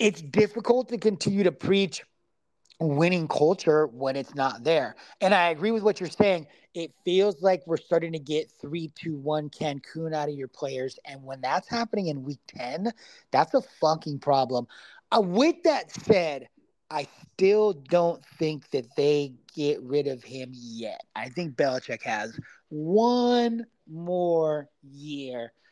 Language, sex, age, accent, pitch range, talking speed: English, male, 30-49, American, 145-200 Hz, 155 wpm